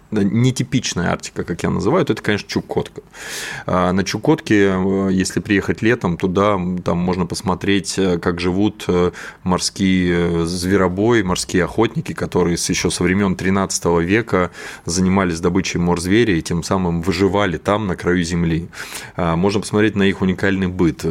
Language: Russian